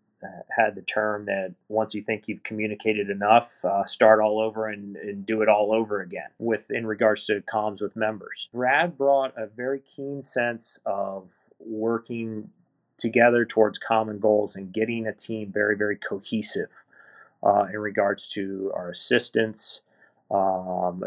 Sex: male